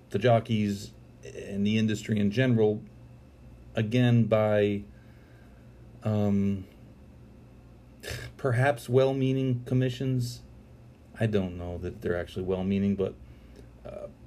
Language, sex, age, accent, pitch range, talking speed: English, male, 40-59, American, 95-115 Hz, 95 wpm